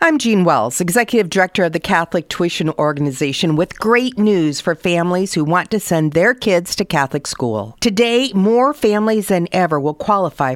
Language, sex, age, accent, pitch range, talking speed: English, female, 50-69, American, 140-195 Hz, 175 wpm